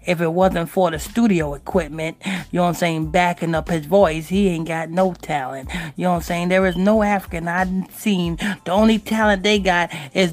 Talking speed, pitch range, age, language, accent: 220 wpm, 175-220 Hz, 30-49, English, American